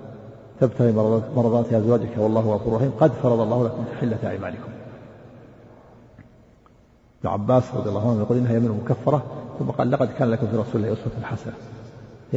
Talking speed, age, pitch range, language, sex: 150 wpm, 50-69, 110-130 Hz, Arabic, male